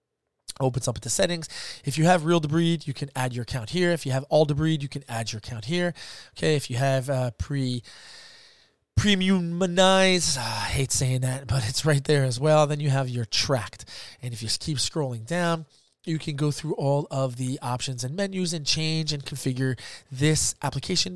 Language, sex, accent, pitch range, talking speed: English, male, American, 125-160 Hz, 200 wpm